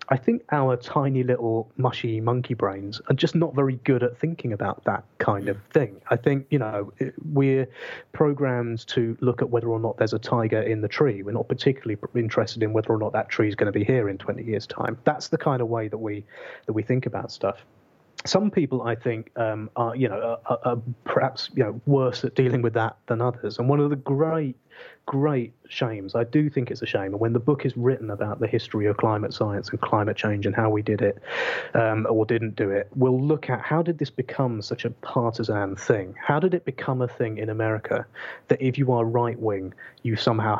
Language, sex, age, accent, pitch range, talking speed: English, male, 30-49, British, 110-135 Hz, 225 wpm